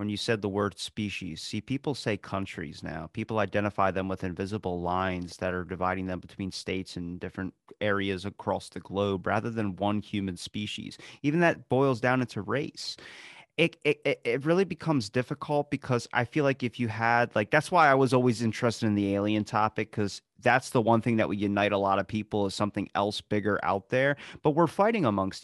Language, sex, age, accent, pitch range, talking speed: English, male, 30-49, American, 100-145 Hz, 205 wpm